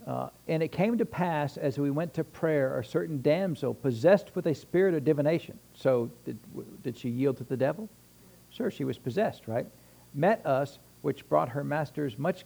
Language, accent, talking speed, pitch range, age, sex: English, American, 195 wpm, 120-155 Hz, 60-79, male